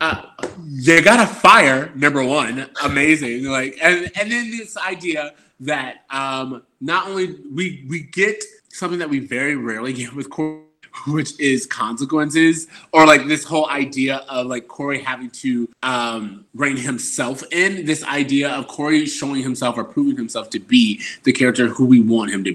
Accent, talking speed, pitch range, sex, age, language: American, 170 wpm, 130-175 Hz, male, 20-39, English